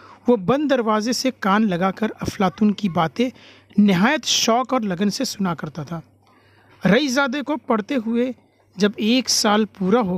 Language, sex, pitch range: Urdu, male, 175-230 Hz